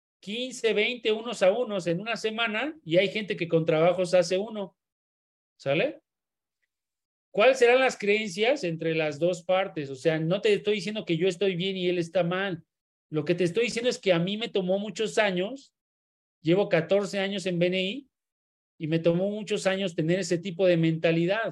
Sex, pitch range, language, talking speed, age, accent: male, 155-195 Hz, Spanish, 185 wpm, 40-59, Mexican